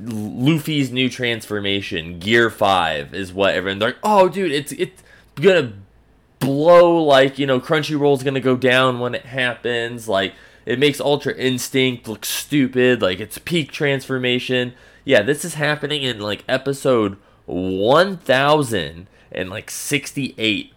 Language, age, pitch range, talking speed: English, 20-39, 105-140 Hz, 140 wpm